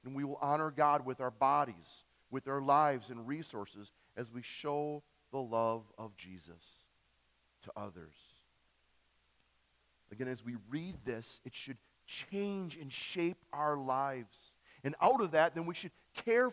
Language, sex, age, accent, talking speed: English, male, 40-59, American, 155 wpm